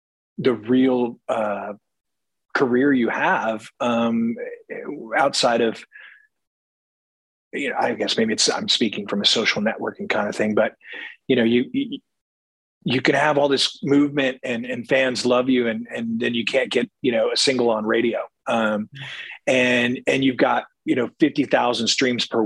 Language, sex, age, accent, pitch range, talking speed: English, male, 30-49, American, 110-130 Hz, 165 wpm